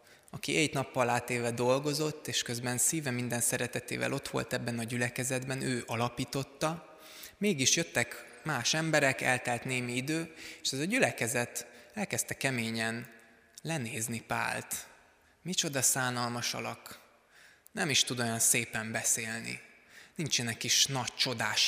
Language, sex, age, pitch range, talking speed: Hungarian, male, 20-39, 120-145 Hz, 125 wpm